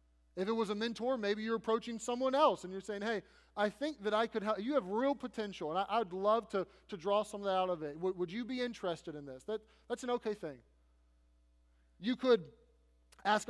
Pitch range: 165-220 Hz